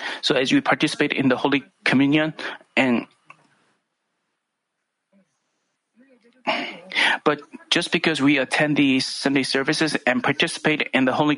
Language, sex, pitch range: Korean, male, 140-220 Hz